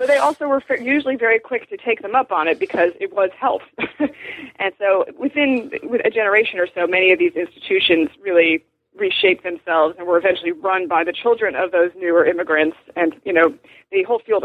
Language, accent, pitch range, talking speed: English, American, 170-220 Hz, 200 wpm